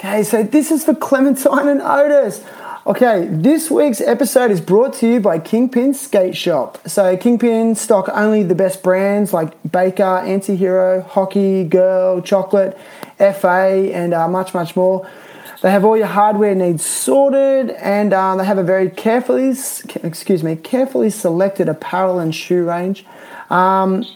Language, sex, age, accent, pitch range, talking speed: English, male, 20-39, Australian, 175-210 Hz, 150 wpm